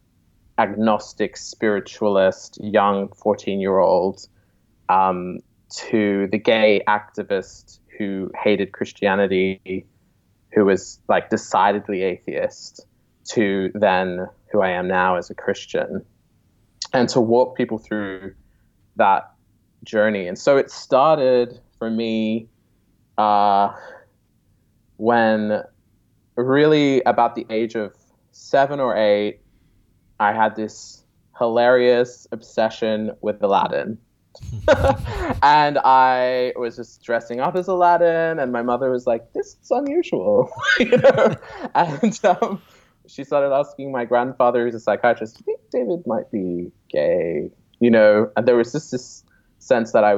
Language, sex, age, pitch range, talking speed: English, male, 20-39, 100-125 Hz, 120 wpm